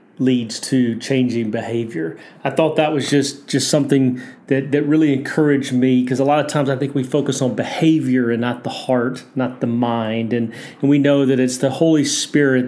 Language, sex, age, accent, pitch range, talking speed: English, male, 30-49, American, 125-145 Hz, 205 wpm